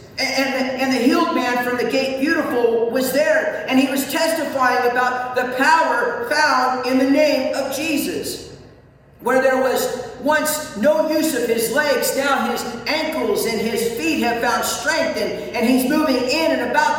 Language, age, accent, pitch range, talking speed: English, 50-69, American, 245-300 Hz, 175 wpm